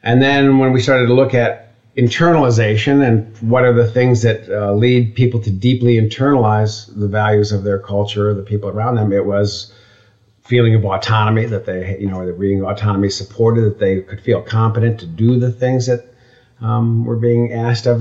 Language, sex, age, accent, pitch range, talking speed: English, male, 50-69, American, 105-120 Hz, 195 wpm